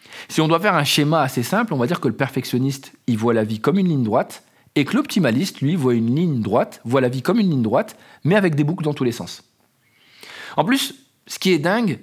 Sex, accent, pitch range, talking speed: male, French, 125-175 Hz, 255 wpm